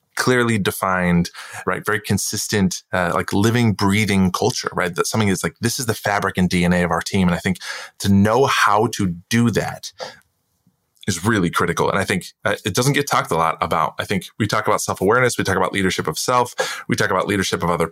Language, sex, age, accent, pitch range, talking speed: English, male, 20-39, American, 90-110 Hz, 220 wpm